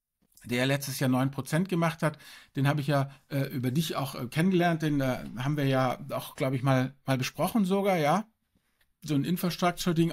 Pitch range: 135-155 Hz